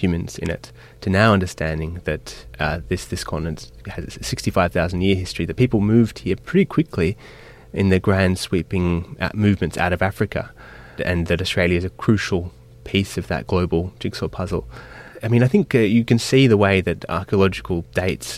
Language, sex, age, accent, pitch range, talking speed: English, male, 20-39, Australian, 85-110 Hz, 175 wpm